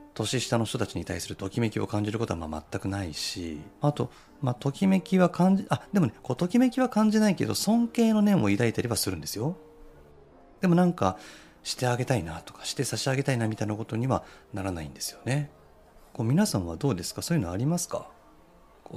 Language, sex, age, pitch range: Japanese, male, 40-59, 95-145 Hz